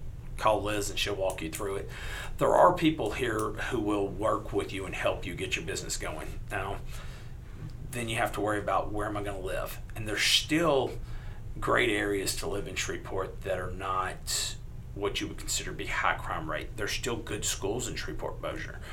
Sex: male